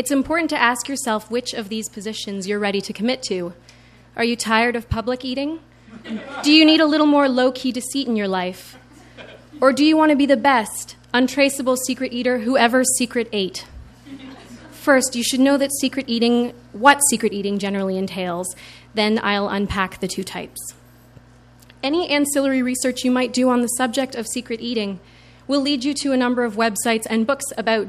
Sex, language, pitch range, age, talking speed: female, English, 210-265 Hz, 30-49, 185 wpm